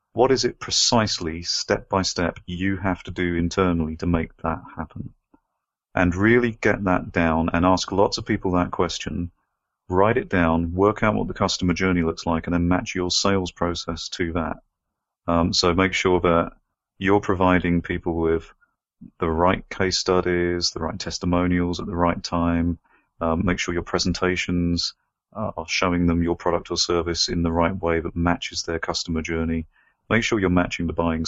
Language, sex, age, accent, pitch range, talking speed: English, male, 30-49, British, 85-95 Hz, 180 wpm